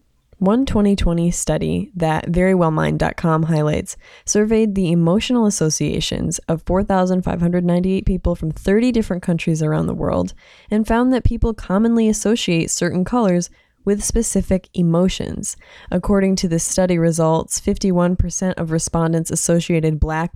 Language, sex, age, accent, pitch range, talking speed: English, female, 20-39, American, 155-190 Hz, 120 wpm